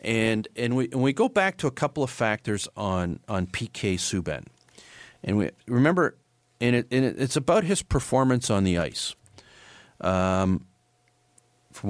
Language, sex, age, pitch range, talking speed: English, male, 40-59, 95-125 Hz, 160 wpm